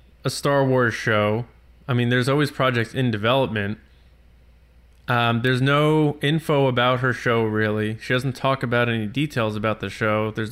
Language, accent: English, American